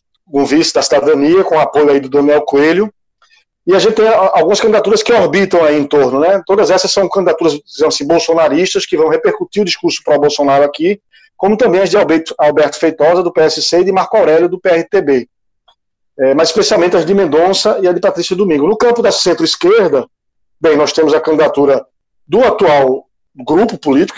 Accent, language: Brazilian, Portuguese